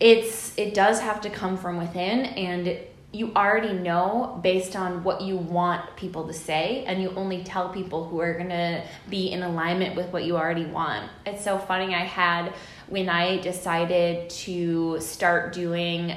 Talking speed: 180 wpm